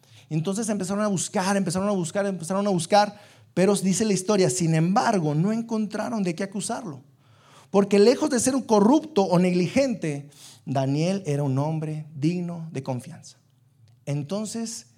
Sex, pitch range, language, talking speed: male, 140-205 Hz, Spanish, 150 wpm